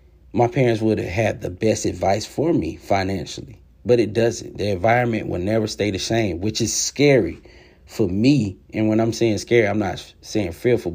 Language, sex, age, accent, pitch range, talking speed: English, male, 30-49, American, 85-120 Hz, 190 wpm